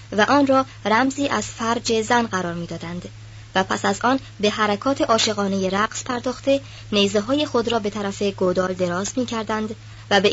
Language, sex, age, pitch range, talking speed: Persian, male, 20-39, 175-250 Hz, 175 wpm